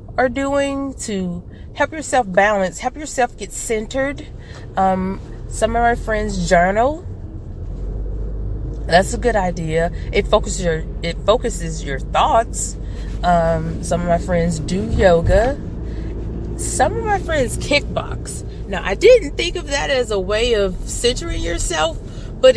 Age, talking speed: 30-49, 140 wpm